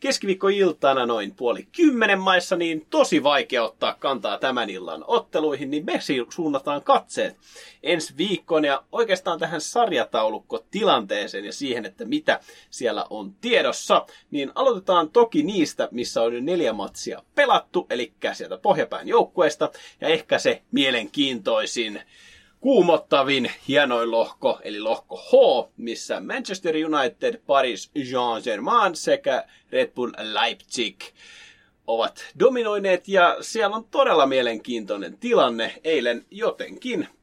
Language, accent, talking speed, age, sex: Finnish, native, 120 wpm, 30-49, male